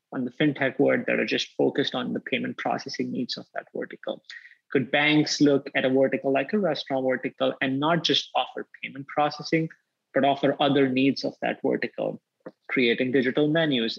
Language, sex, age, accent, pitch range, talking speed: English, male, 30-49, Indian, 130-165 Hz, 180 wpm